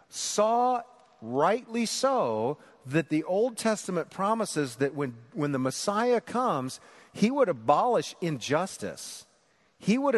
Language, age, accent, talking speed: English, 40-59, American, 120 wpm